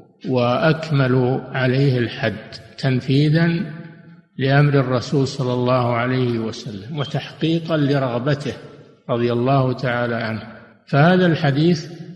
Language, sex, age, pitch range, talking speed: Arabic, male, 60-79, 125-150 Hz, 90 wpm